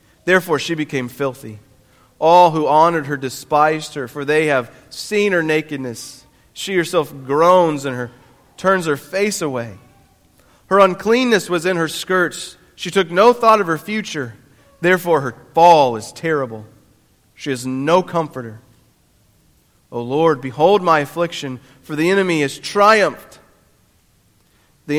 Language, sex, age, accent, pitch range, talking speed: English, male, 40-59, American, 120-160 Hz, 140 wpm